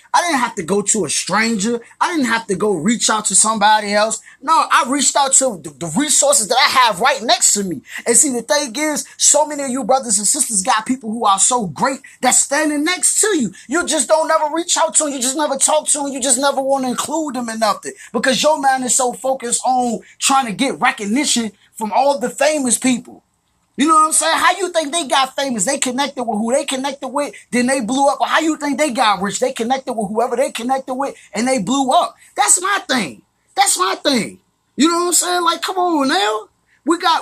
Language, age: English, 20-39